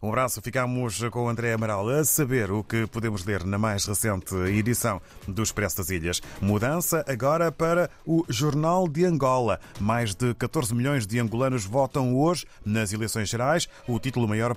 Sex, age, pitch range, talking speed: male, 30-49, 105-135 Hz, 175 wpm